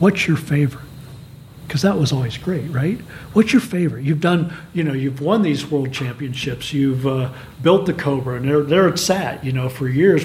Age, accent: 50-69, American